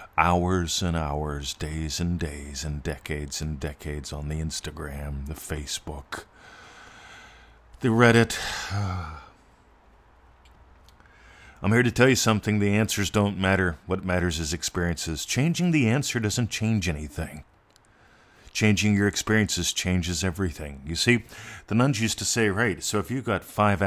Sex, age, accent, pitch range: male, 50-69, American, 80-105 Hz